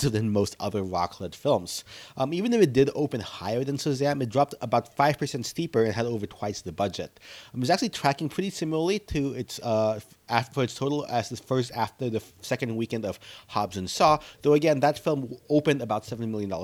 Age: 30-49